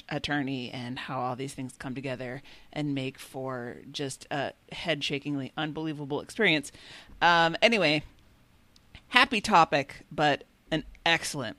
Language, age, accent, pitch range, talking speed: English, 40-59, American, 150-215 Hz, 125 wpm